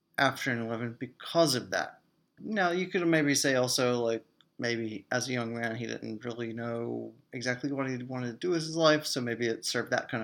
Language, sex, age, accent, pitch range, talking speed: English, male, 30-49, American, 115-150 Hz, 210 wpm